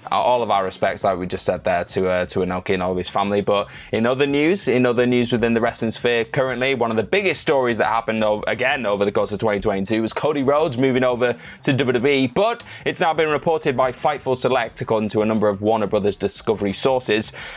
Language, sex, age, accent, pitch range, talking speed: English, male, 20-39, British, 105-125 Hz, 230 wpm